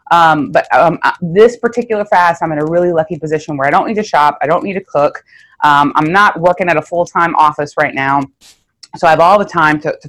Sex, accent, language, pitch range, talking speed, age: female, American, English, 150-190 Hz, 245 wpm, 30-49